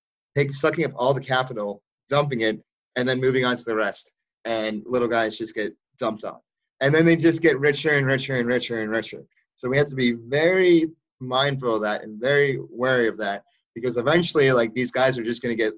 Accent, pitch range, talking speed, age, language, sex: American, 110-135 Hz, 220 wpm, 20-39, English, male